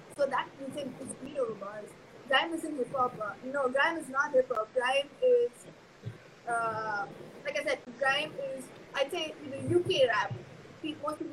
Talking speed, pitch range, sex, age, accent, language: 190 wpm, 245-315 Hz, female, 20-39, native, Tamil